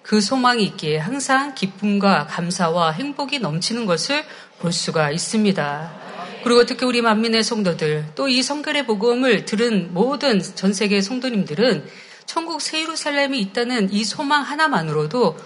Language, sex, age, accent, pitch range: Korean, female, 40-59, native, 170-240 Hz